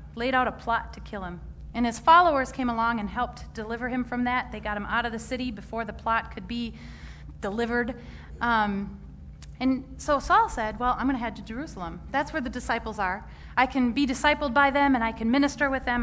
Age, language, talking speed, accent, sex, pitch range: 30-49, English, 220 wpm, American, female, 215-285 Hz